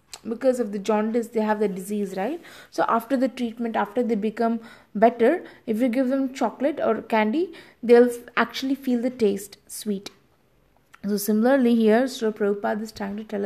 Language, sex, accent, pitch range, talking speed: English, female, Indian, 215-250 Hz, 175 wpm